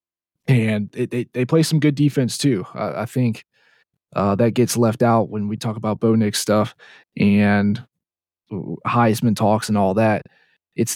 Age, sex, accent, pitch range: 20-39, male, American, 105-125 Hz